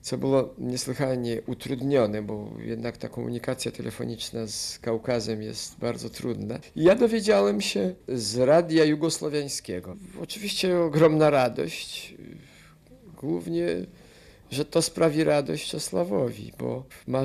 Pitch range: 110-140 Hz